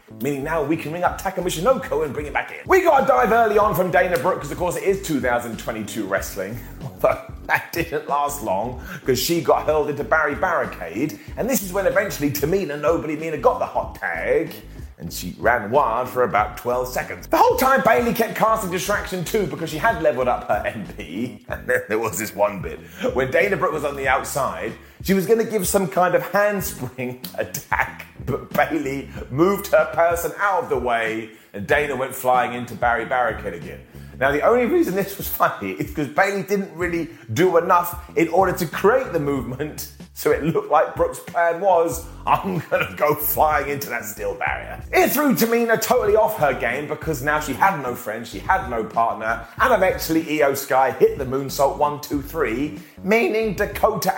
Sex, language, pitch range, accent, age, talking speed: male, English, 140-205 Hz, British, 30-49, 200 wpm